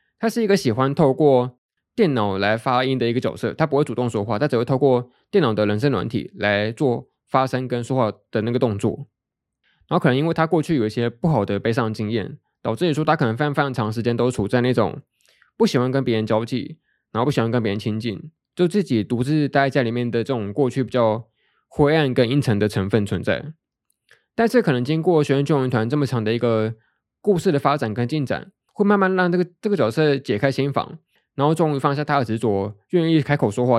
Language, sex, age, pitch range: Chinese, male, 20-39, 115-155 Hz